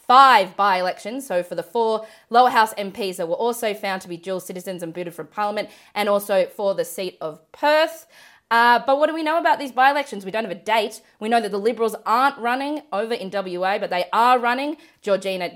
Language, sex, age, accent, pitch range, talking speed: English, female, 20-39, Australian, 185-245 Hz, 220 wpm